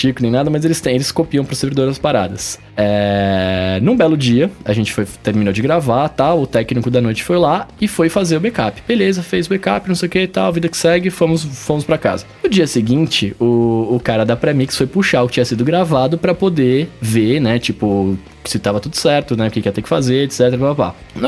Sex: male